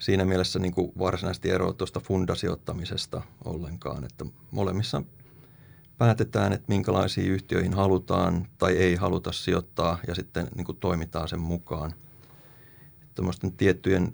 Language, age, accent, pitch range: Finnish, 30-49, native, 90-110 Hz